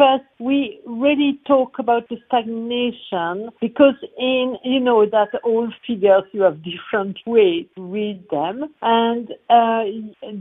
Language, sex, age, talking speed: English, female, 50-69, 125 wpm